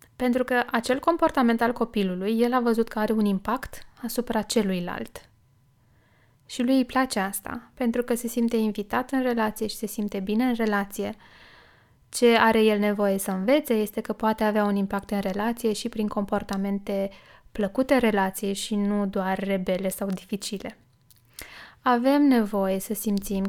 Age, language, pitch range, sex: 20-39, Romanian, 195-235 Hz, female